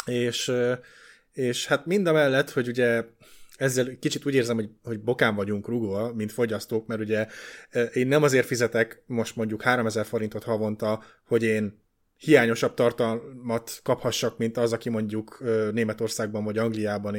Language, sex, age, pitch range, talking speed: Hungarian, male, 20-39, 110-135 Hz, 145 wpm